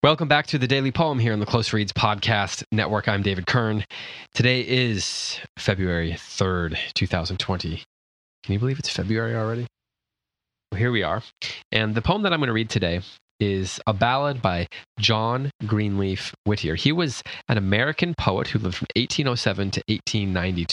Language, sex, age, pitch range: English, male, 20-39, 85-115 Hz